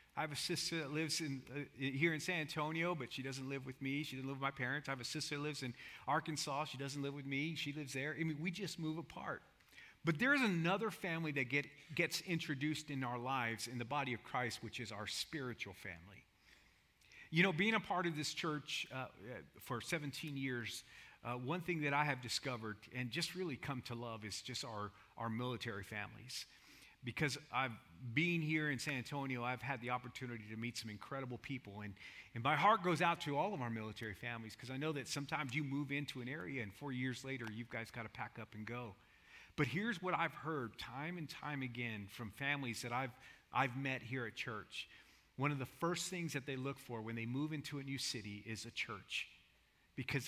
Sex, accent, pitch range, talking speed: male, American, 120-155 Hz, 225 wpm